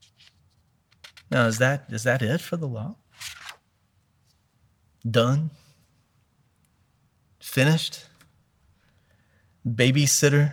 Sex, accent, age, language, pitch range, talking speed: male, American, 30-49, English, 105-145 Hz, 70 wpm